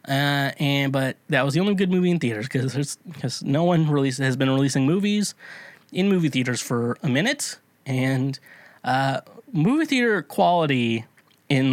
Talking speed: 165 wpm